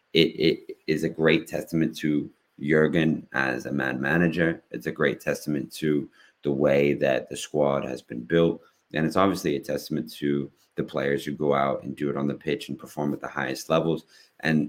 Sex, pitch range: male, 70-80 Hz